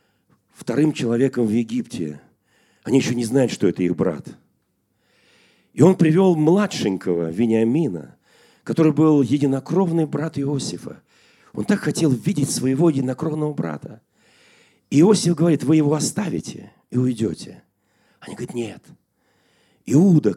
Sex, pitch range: male, 135-200 Hz